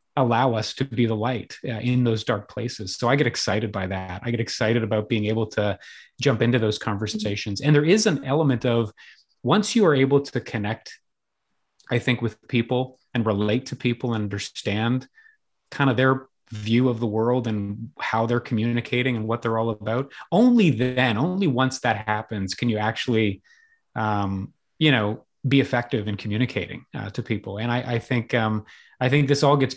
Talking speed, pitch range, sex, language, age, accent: 190 wpm, 110-130 Hz, male, English, 30-49, American